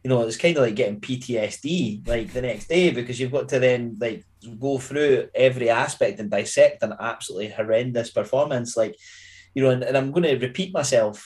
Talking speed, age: 195 wpm, 20-39